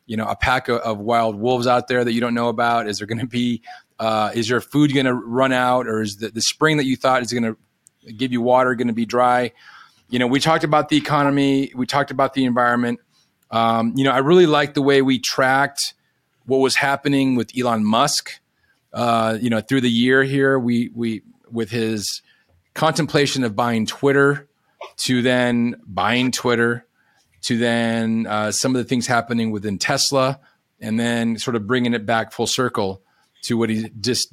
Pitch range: 110-130 Hz